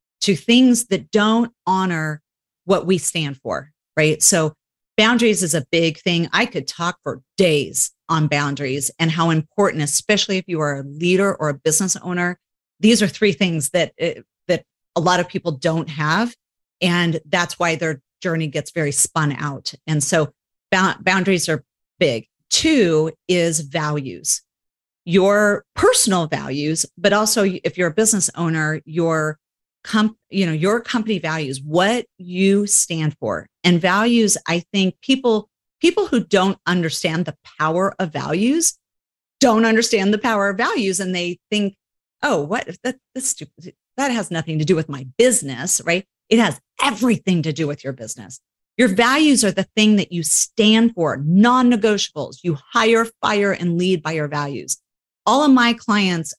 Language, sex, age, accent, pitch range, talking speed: English, female, 40-59, American, 155-215 Hz, 165 wpm